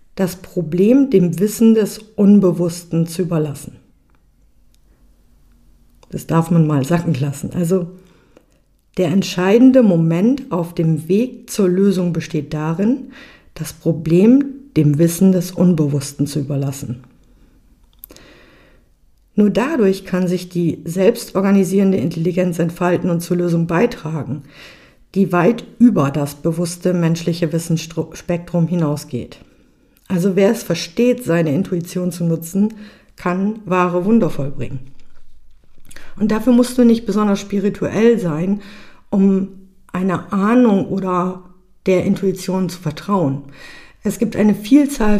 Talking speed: 115 wpm